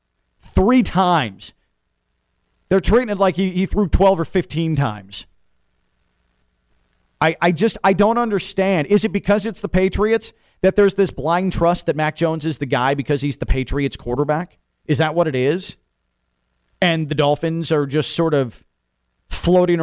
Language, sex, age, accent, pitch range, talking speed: English, male, 40-59, American, 125-195 Hz, 165 wpm